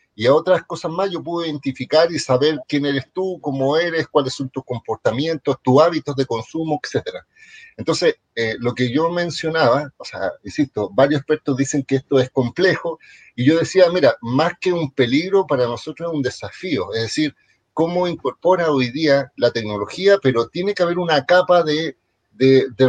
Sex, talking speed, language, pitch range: male, 185 wpm, Spanish, 130-170 Hz